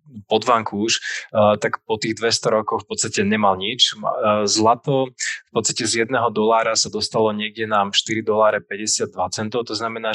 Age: 20-39